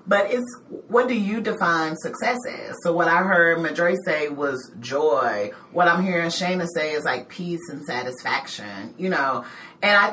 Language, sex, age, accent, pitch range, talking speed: English, female, 30-49, American, 175-230 Hz, 180 wpm